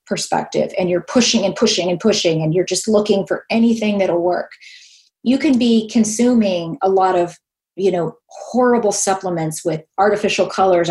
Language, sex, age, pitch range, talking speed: English, female, 30-49, 190-225 Hz, 165 wpm